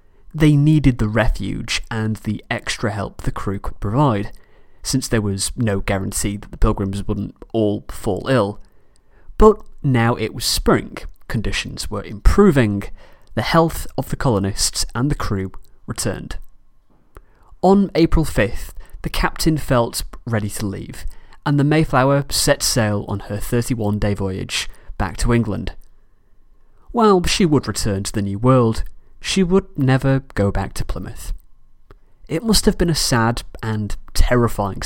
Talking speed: 145 wpm